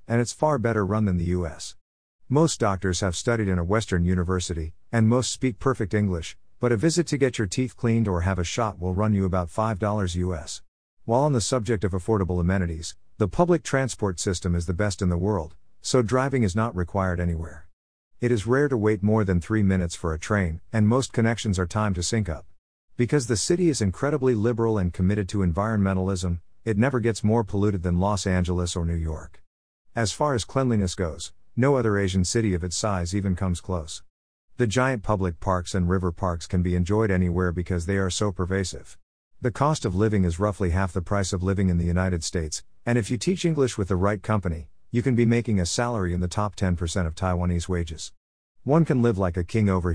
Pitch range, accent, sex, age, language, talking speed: 90-115 Hz, American, male, 50-69, English, 215 wpm